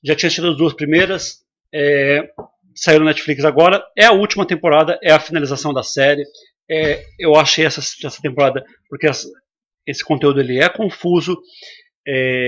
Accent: Brazilian